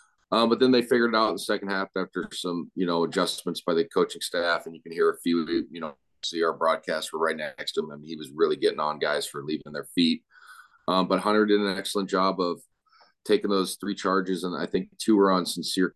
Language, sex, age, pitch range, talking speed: English, male, 30-49, 90-105 Hz, 250 wpm